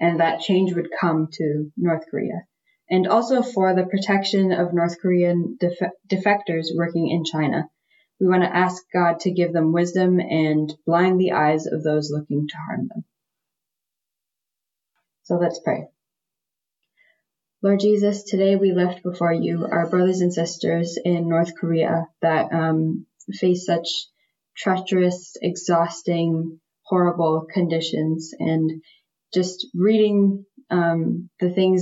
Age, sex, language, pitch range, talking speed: 20-39, female, English, 165-185 Hz, 135 wpm